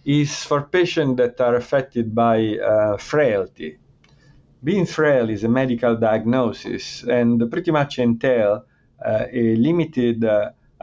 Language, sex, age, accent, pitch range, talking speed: English, male, 50-69, Italian, 115-135 Hz, 125 wpm